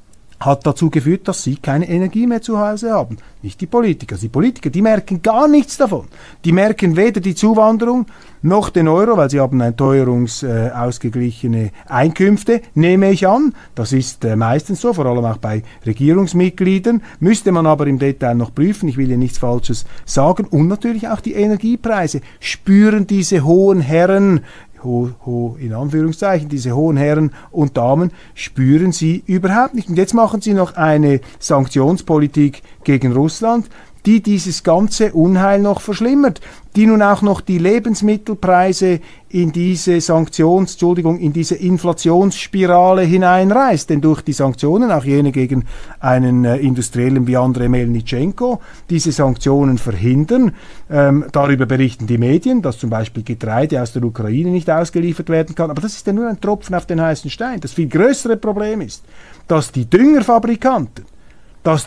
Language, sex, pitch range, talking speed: German, male, 130-200 Hz, 155 wpm